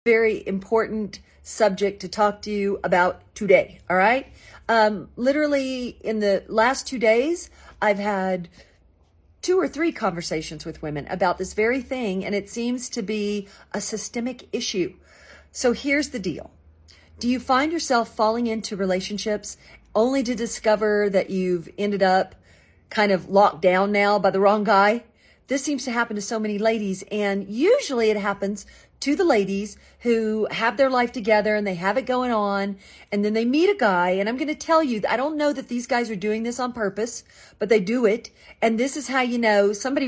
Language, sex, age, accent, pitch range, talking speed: English, female, 40-59, American, 200-245 Hz, 185 wpm